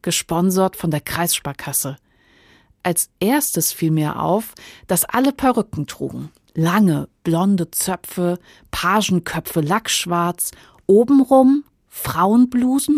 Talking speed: 95 wpm